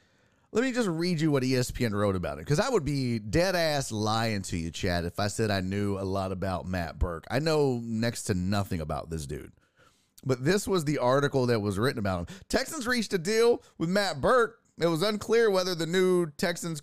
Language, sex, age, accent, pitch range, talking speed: English, male, 30-49, American, 105-170 Hz, 220 wpm